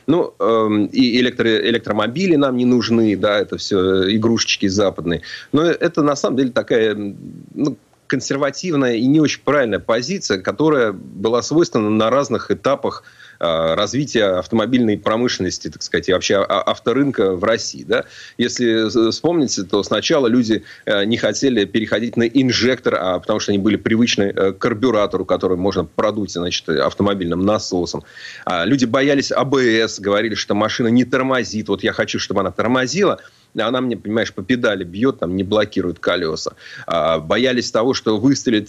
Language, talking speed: Russian, 145 wpm